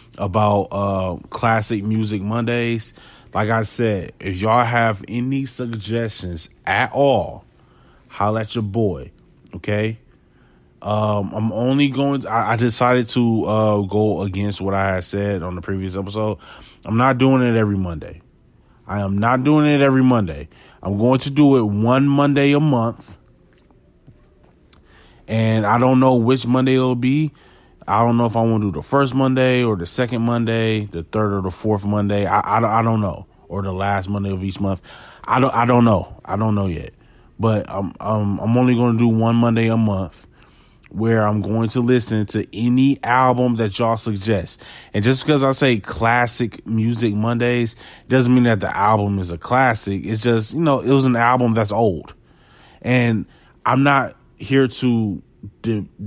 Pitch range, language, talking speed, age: 100-125 Hz, English, 180 wpm, 20-39